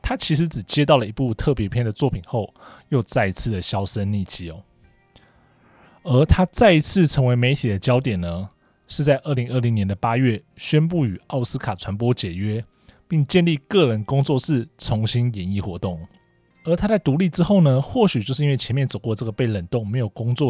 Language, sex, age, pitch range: Chinese, male, 20-39, 105-145 Hz